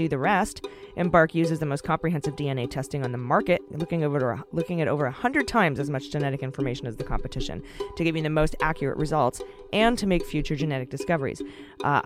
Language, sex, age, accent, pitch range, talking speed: English, female, 20-39, American, 145-180 Hz, 210 wpm